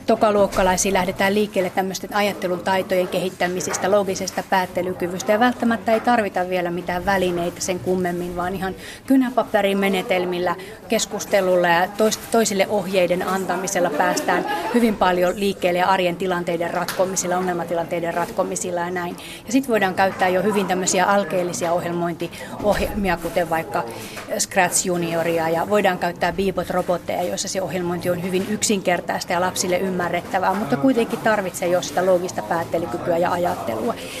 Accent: native